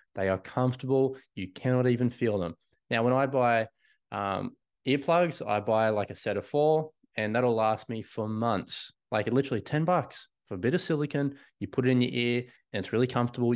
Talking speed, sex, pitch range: 205 wpm, male, 105-125 Hz